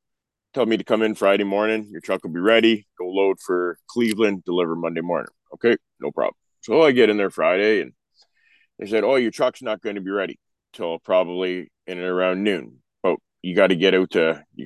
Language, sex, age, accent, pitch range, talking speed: English, male, 20-39, American, 85-105 Hz, 215 wpm